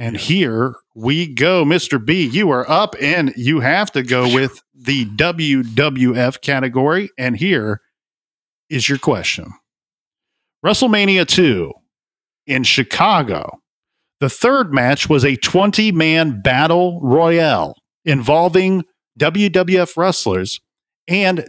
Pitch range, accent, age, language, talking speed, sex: 130-175 Hz, American, 50-69, English, 110 wpm, male